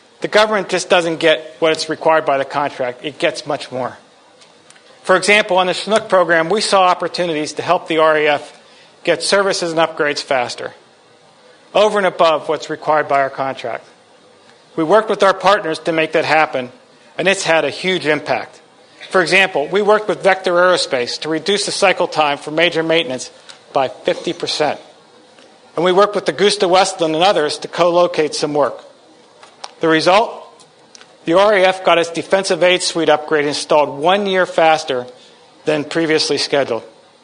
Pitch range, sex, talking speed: 155-185 Hz, male, 165 wpm